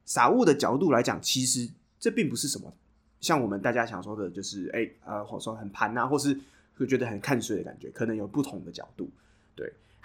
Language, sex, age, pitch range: Chinese, male, 20-39, 110-150 Hz